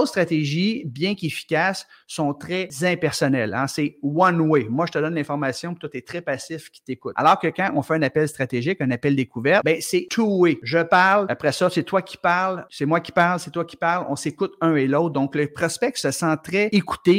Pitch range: 140-170 Hz